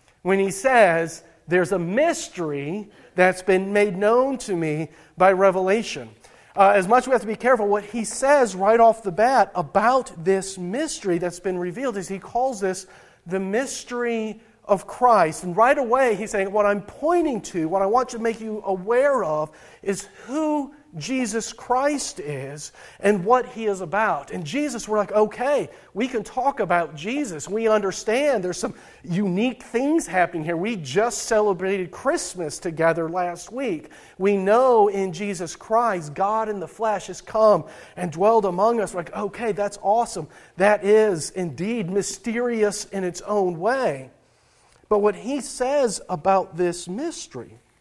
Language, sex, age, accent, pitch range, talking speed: English, male, 40-59, American, 180-235 Hz, 165 wpm